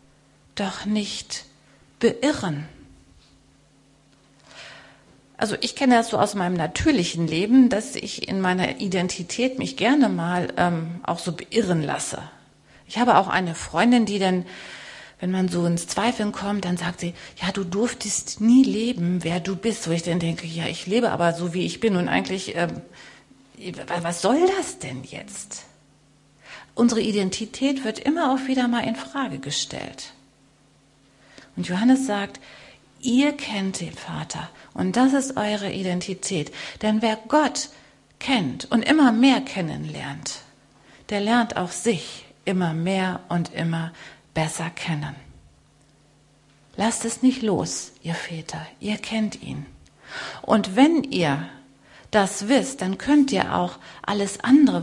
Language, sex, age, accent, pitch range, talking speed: English, female, 40-59, German, 165-230 Hz, 140 wpm